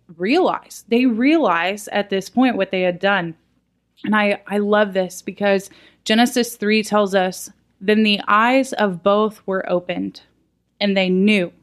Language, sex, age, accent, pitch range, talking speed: English, female, 20-39, American, 175-210 Hz, 155 wpm